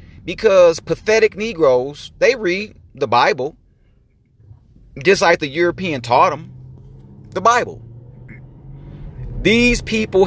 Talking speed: 100 wpm